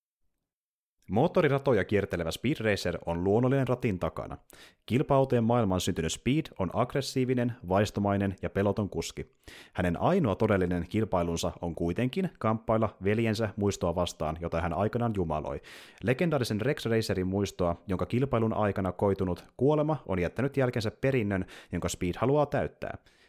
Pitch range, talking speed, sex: 95-130 Hz, 125 wpm, male